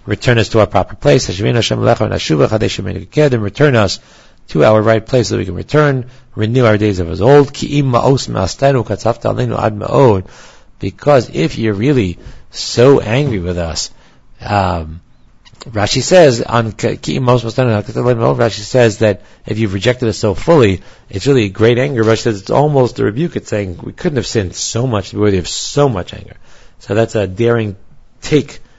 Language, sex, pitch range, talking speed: English, male, 105-125 Hz, 155 wpm